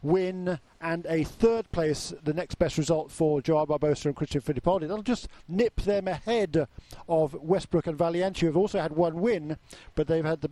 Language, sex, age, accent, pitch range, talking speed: English, male, 50-69, British, 155-200 Hz, 190 wpm